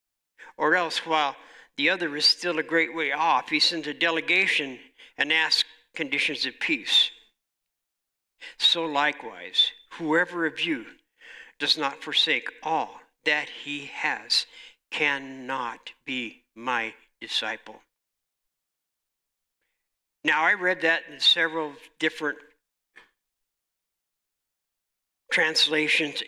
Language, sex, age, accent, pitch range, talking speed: English, male, 60-79, American, 140-170 Hz, 100 wpm